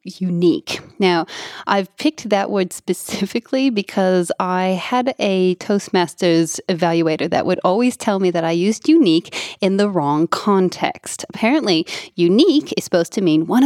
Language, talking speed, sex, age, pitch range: English, 145 wpm, female, 20-39, 180-265 Hz